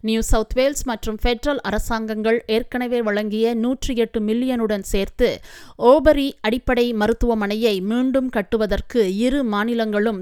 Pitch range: 215-245 Hz